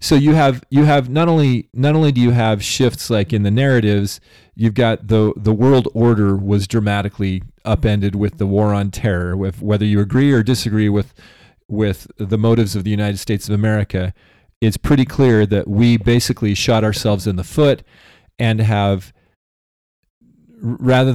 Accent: American